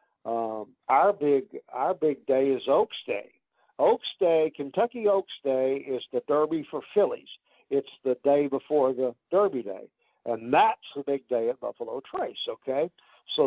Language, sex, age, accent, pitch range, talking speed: English, male, 60-79, American, 130-175 Hz, 160 wpm